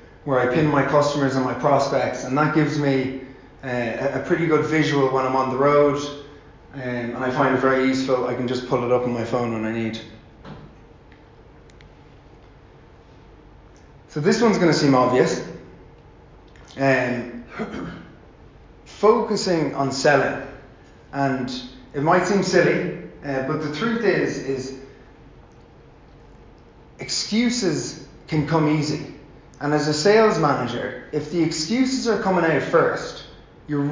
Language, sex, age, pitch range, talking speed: English, male, 30-49, 130-160 Hz, 140 wpm